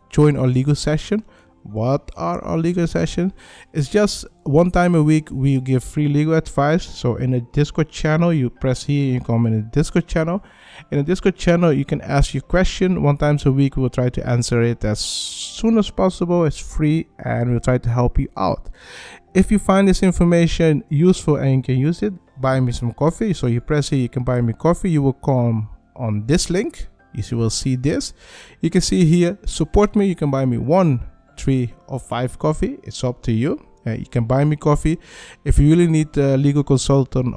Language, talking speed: English, 210 wpm